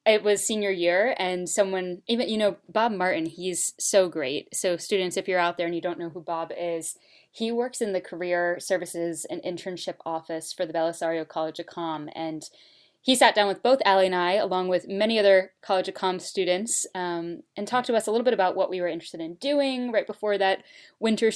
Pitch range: 175-215 Hz